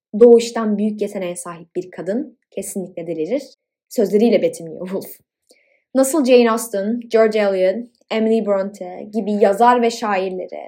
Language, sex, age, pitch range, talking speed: Turkish, female, 20-39, 205-275 Hz, 125 wpm